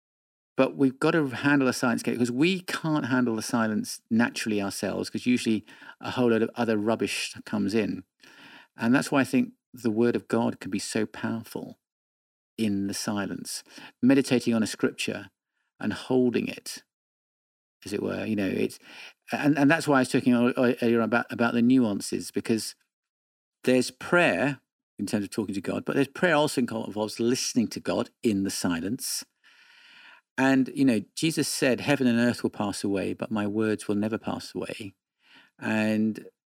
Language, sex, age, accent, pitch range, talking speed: English, male, 50-69, British, 105-130 Hz, 175 wpm